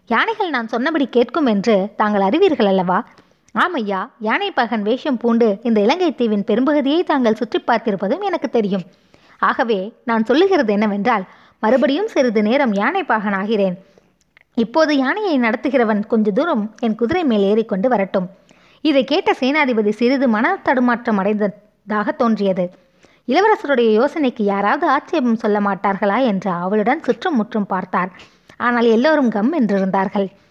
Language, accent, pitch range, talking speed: Tamil, native, 210-280 Hz, 115 wpm